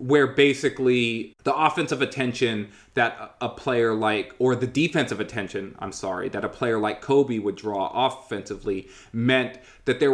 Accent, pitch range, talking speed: American, 105-125 Hz, 155 wpm